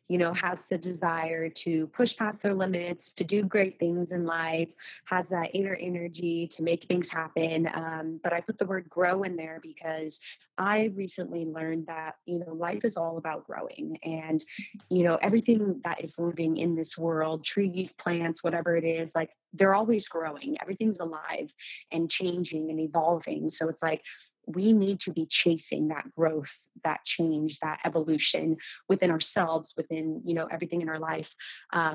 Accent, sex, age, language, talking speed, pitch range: American, female, 20-39, English, 175 wpm, 160-180 Hz